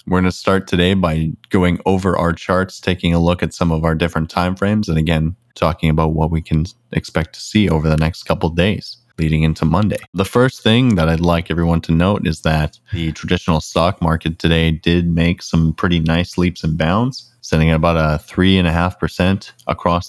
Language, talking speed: English, 215 wpm